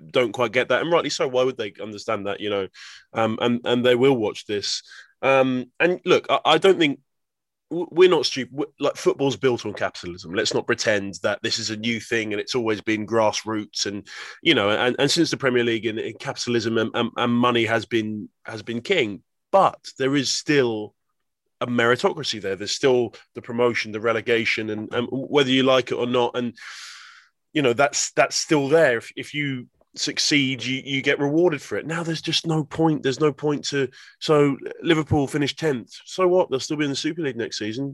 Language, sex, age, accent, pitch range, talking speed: English, male, 20-39, British, 115-150 Hz, 210 wpm